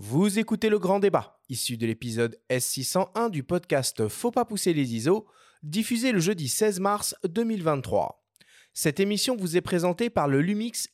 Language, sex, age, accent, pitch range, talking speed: French, male, 30-49, French, 135-215 Hz, 165 wpm